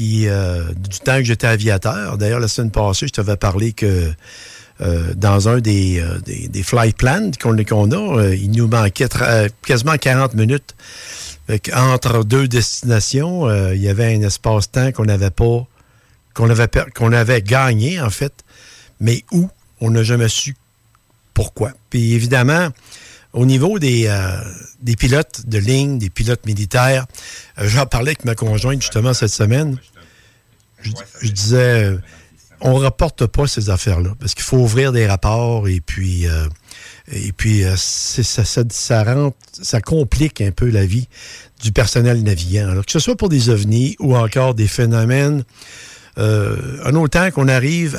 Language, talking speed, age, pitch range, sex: French, 170 wpm, 60-79, 105-130 Hz, male